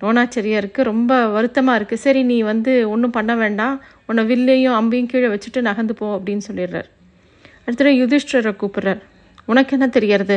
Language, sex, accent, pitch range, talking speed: Tamil, female, native, 215-265 Hz, 145 wpm